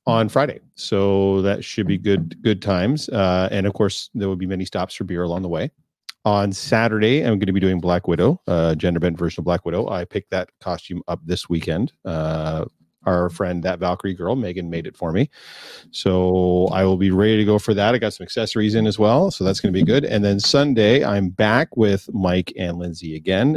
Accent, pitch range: American, 90-115 Hz